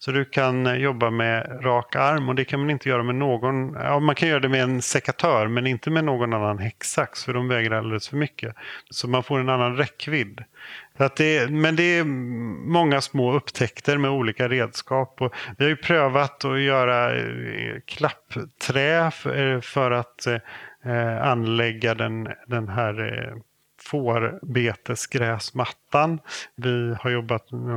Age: 40-59